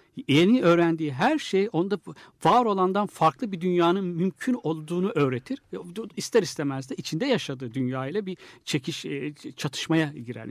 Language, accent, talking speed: Turkish, native, 135 wpm